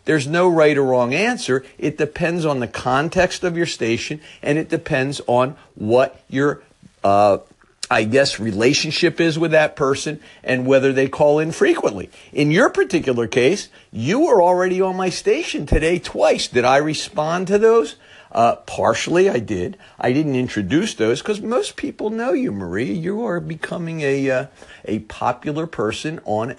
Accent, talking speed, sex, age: American, 165 wpm, male, 50-69